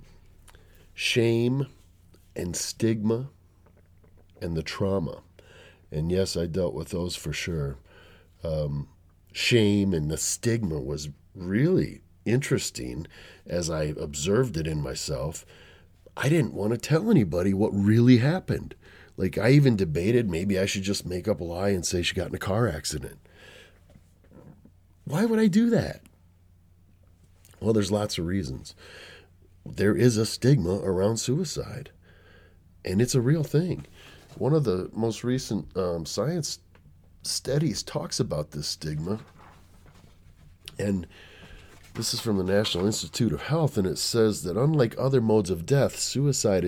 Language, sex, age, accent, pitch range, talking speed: English, male, 40-59, American, 85-110 Hz, 140 wpm